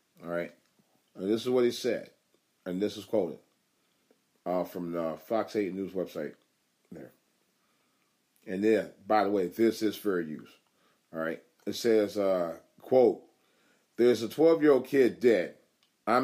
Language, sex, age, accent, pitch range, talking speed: English, male, 40-59, American, 95-120 Hz, 150 wpm